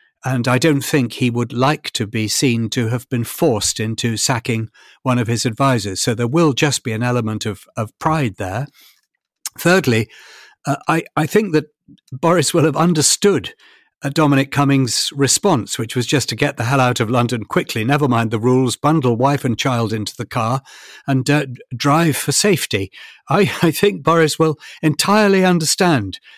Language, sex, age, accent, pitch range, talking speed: English, male, 60-79, British, 115-150 Hz, 175 wpm